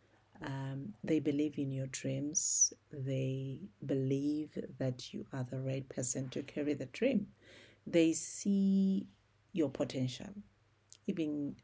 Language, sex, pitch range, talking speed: English, female, 110-150 Hz, 120 wpm